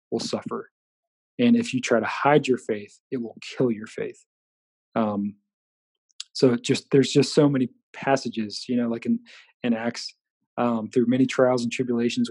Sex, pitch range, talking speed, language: male, 120-155 Hz, 170 wpm, English